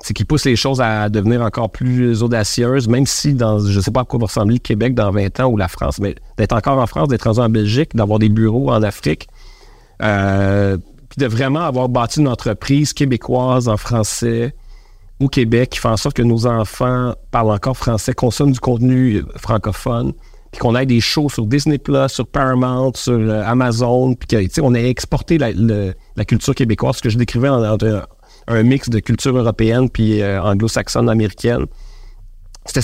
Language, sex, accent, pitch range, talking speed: French, male, Canadian, 105-125 Hz, 190 wpm